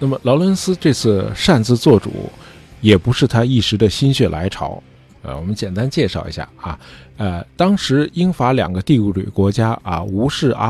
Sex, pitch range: male, 100-140 Hz